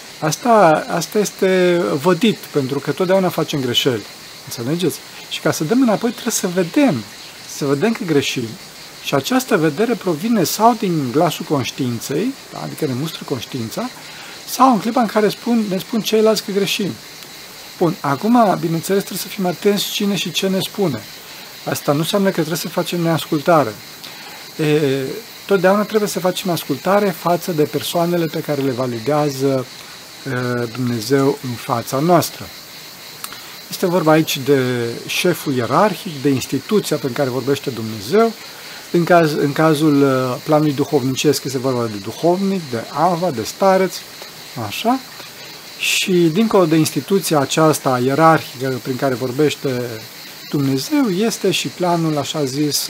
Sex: male